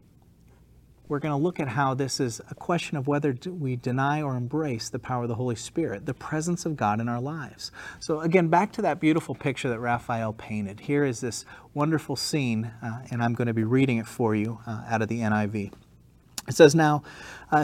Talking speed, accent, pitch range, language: 210 wpm, American, 110-140 Hz, English